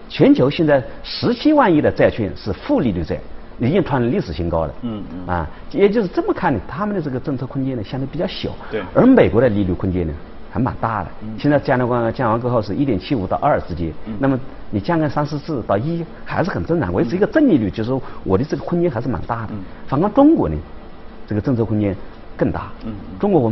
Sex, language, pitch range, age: male, Chinese, 110-175 Hz, 50-69